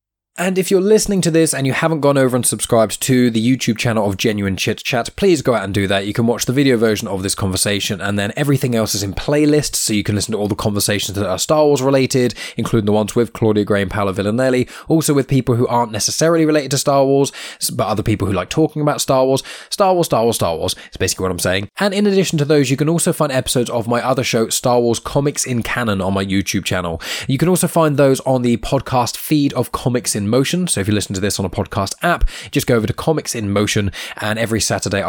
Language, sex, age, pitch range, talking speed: English, male, 20-39, 105-140 Hz, 265 wpm